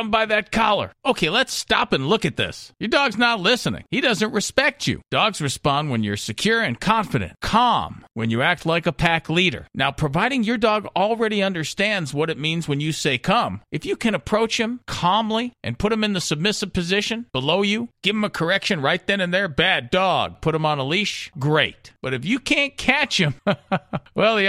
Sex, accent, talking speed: male, American, 210 wpm